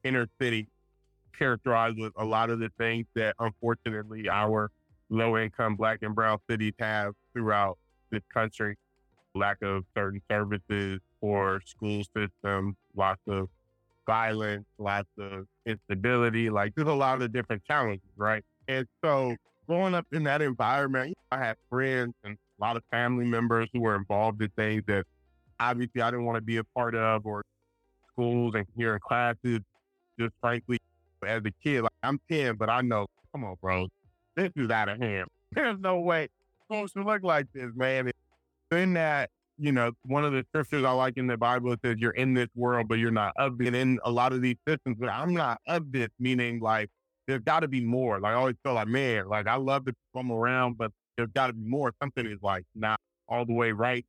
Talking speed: 195 wpm